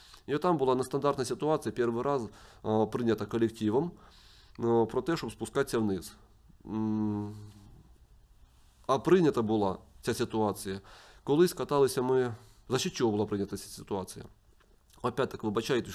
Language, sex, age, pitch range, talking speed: Ukrainian, male, 30-49, 105-140 Hz, 120 wpm